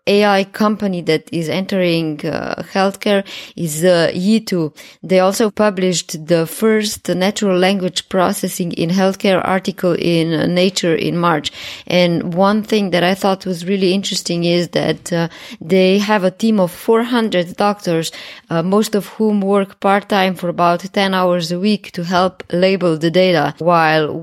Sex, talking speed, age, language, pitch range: female, 155 wpm, 20-39, English, 160-190 Hz